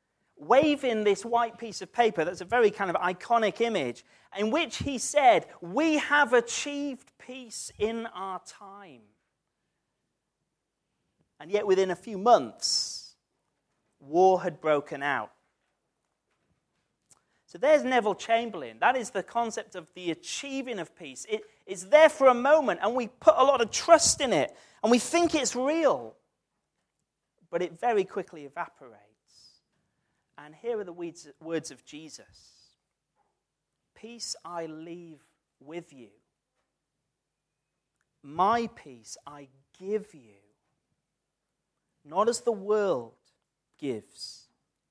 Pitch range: 165-245 Hz